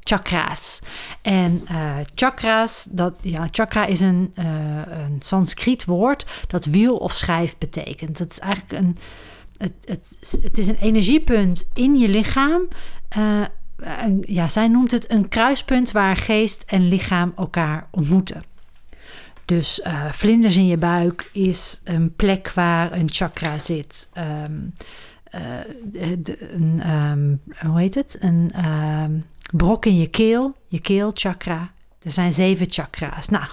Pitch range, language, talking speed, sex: 170-230 Hz, Dutch, 140 wpm, female